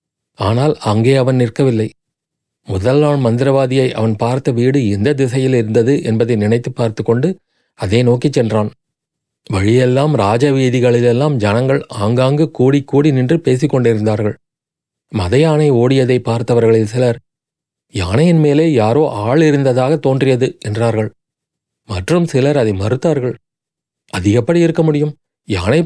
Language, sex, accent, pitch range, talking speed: Tamil, male, native, 115-145 Hz, 100 wpm